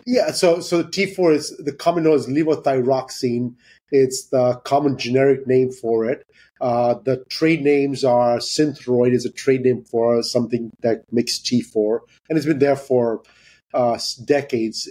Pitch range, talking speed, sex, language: 125-150 Hz, 155 wpm, male, English